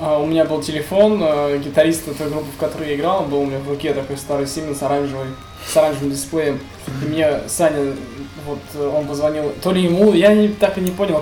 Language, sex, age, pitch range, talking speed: Russian, male, 20-39, 140-165 Hz, 220 wpm